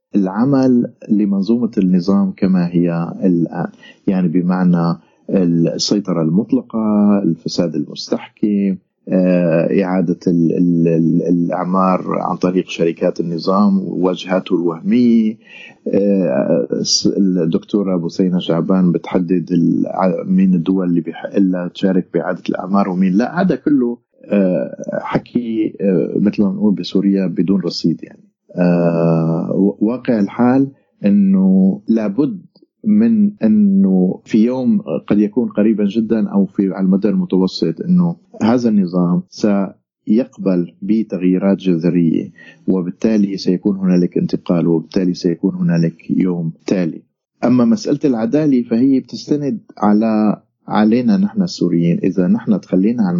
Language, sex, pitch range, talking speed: Arabic, male, 90-120 Hz, 100 wpm